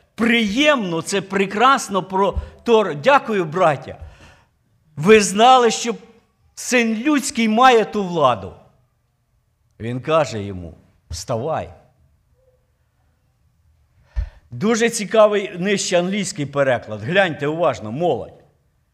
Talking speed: 85 wpm